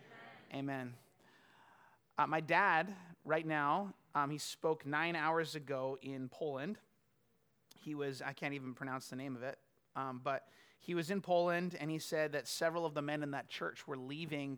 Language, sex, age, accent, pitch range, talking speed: English, male, 30-49, American, 135-170 Hz, 175 wpm